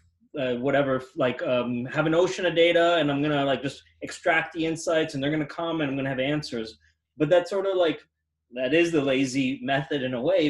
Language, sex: English, male